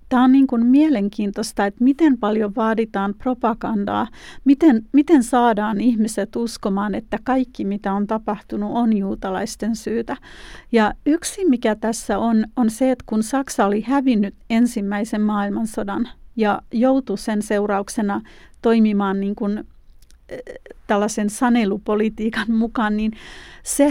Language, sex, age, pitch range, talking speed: Finnish, female, 40-59, 205-240 Hz, 120 wpm